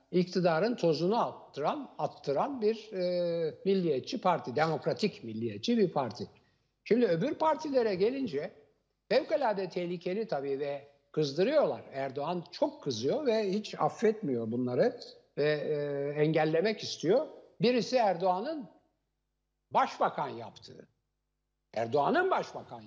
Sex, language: male, Turkish